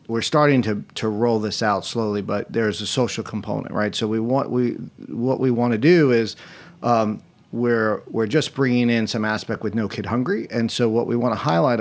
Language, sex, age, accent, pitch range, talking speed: English, male, 40-59, American, 105-130 Hz, 220 wpm